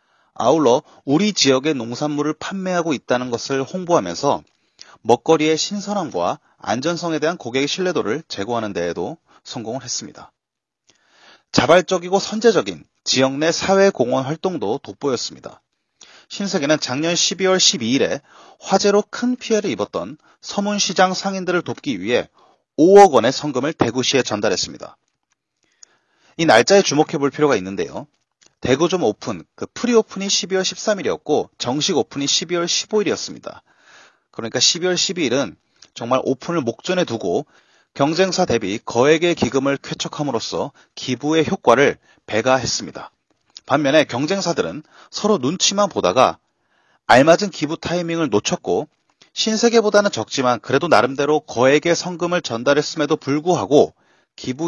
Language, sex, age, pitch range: Korean, male, 30-49, 140-190 Hz